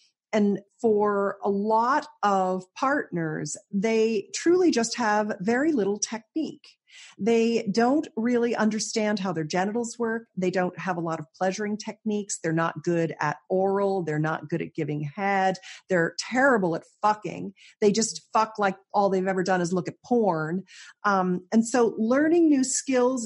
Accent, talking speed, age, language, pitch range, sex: American, 160 wpm, 40-59, English, 180-230 Hz, female